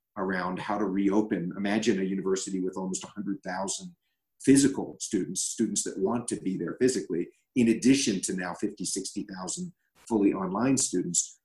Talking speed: 145 wpm